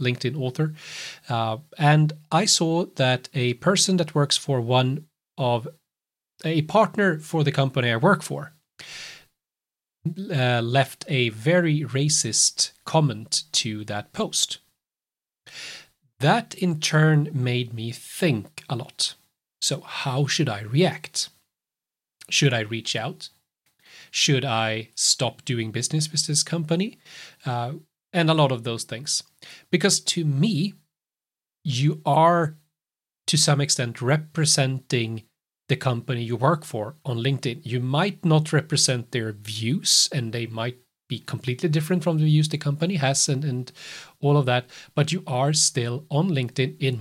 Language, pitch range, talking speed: English, 125-160 Hz, 140 wpm